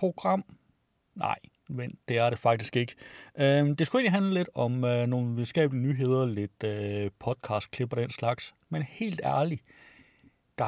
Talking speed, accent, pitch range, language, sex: 165 wpm, native, 110-150 Hz, Danish, male